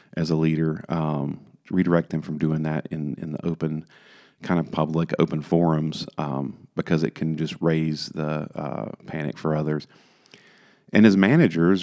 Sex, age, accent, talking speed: male, 40-59, American, 160 wpm